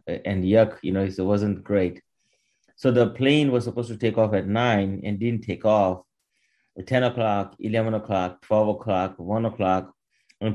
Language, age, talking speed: English, 30-49, 175 wpm